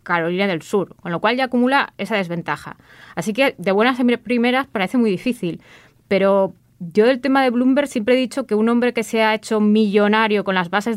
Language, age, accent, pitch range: Spanish, 20-39, Spanish, 190-235 Hz